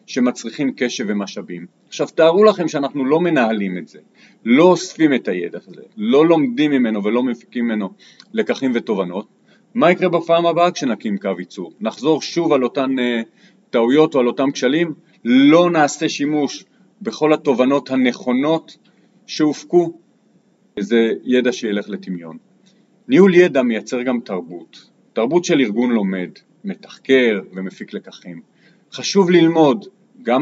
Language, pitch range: Hebrew, 115-175 Hz